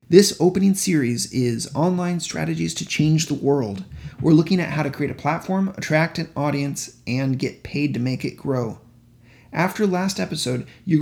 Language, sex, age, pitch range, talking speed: English, male, 30-49, 130-160 Hz, 175 wpm